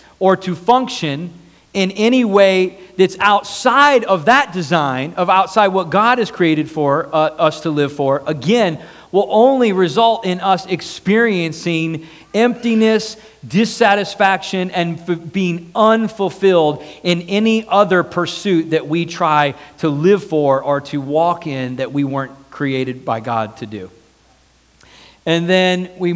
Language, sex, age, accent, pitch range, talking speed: English, male, 40-59, American, 145-190 Hz, 140 wpm